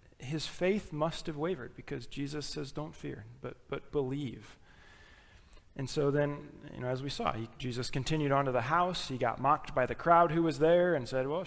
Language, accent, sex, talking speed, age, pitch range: English, American, male, 210 wpm, 20-39, 125-150 Hz